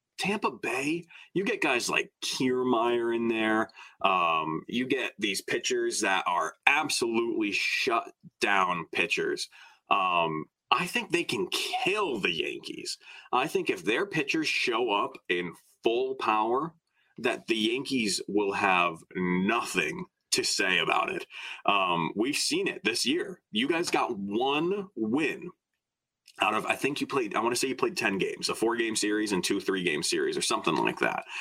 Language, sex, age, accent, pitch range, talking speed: English, male, 30-49, American, 315-385 Hz, 165 wpm